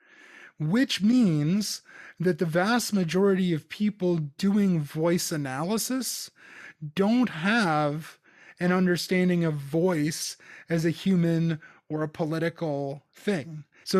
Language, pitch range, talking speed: English, 155-190 Hz, 105 wpm